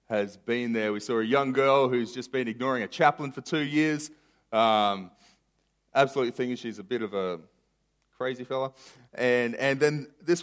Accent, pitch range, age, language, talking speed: Australian, 110-130 Hz, 30-49, English, 180 wpm